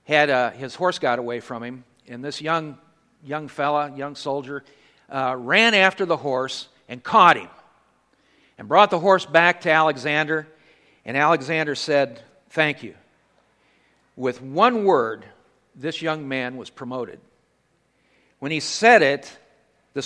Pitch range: 130-170 Hz